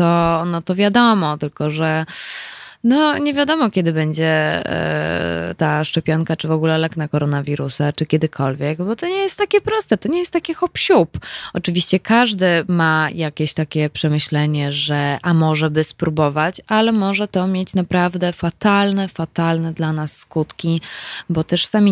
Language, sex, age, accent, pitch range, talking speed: Polish, female, 20-39, native, 140-170 Hz, 150 wpm